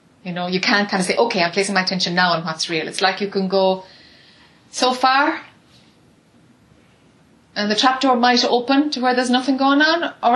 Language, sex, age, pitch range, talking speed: English, female, 30-49, 200-250 Hz, 205 wpm